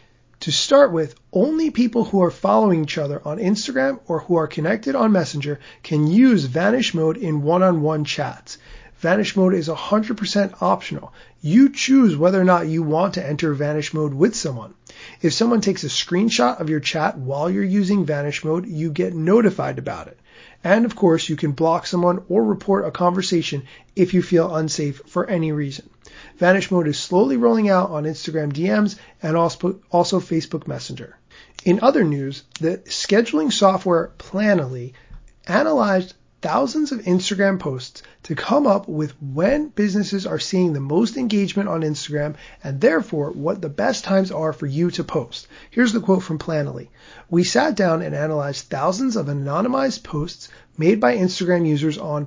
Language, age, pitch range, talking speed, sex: English, 30-49, 155-200 Hz, 170 wpm, male